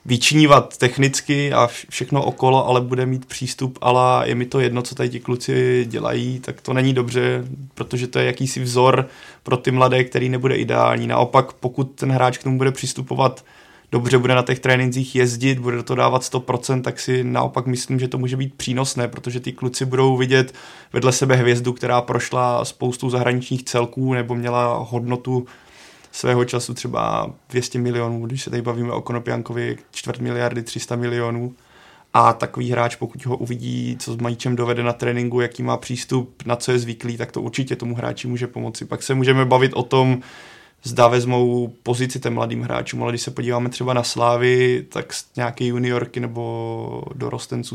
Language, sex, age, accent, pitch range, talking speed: Czech, male, 20-39, native, 120-130 Hz, 180 wpm